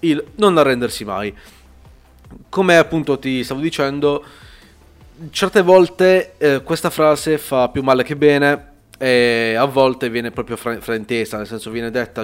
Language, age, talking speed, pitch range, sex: Italian, 20-39, 145 wpm, 120-140 Hz, male